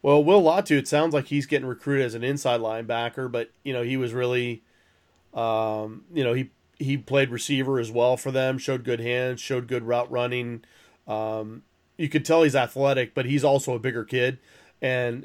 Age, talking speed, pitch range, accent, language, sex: 30-49, 195 wpm, 110-130 Hz, American, English, male